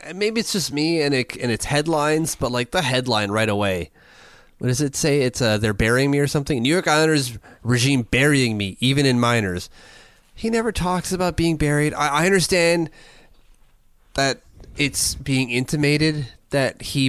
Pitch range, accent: 120-165 Hz, American